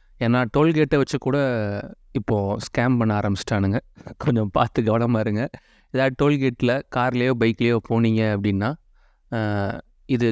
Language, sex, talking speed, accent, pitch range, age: Tamil, male, 105 wpm, native, 110-140 Hz, 30-49